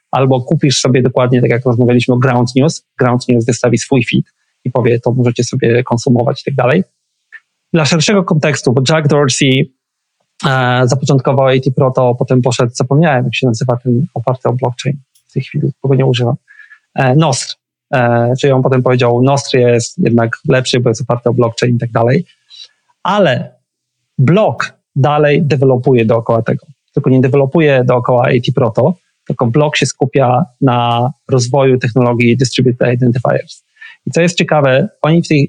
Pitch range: 125-155 Hz